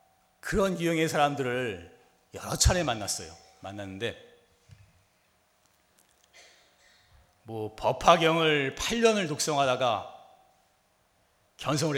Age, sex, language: 40-59, male, Korean